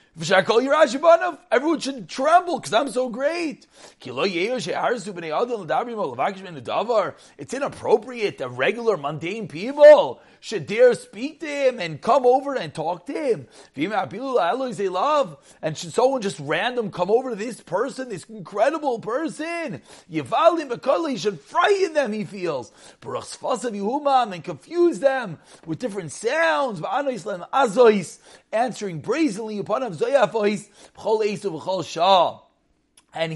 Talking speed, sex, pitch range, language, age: 95 wpm, male, 195-280 Hz, English, 30-49